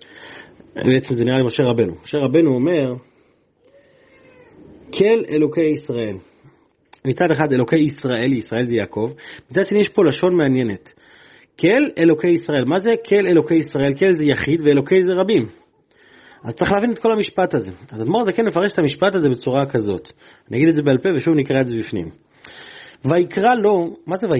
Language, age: Hebrew, 30-49